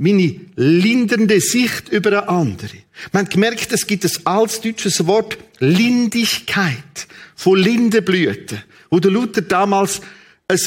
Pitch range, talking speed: 175-215 Hz, 120 wpm